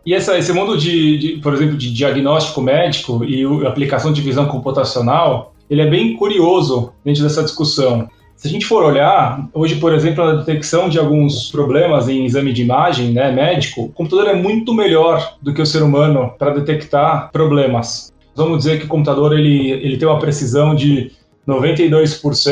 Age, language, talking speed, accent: 20-39, Portuguese, 185 wpm, Brazilian